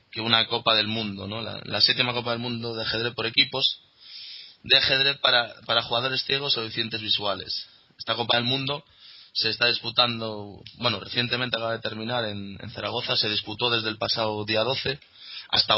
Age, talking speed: 20-39, 185 wpm